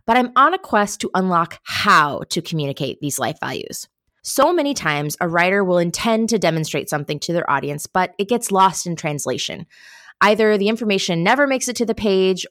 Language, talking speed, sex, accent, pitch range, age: English, 195 wpm, female, American, 165-225 Hz, 20-39